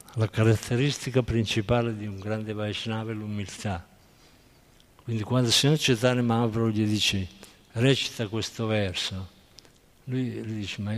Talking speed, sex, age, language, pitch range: 130 wpm, male, 50-69, Italian, 105-140 Hz